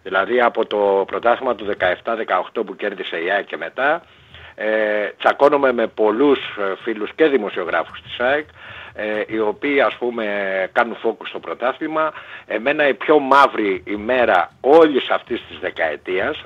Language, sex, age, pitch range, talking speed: Greek, male, 60-79, 110-170 Hz, 140 wpm